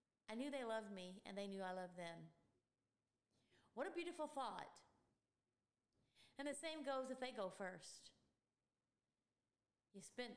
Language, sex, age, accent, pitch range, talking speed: English, female, 30-49, American, 185-230 Hz, 145 wpm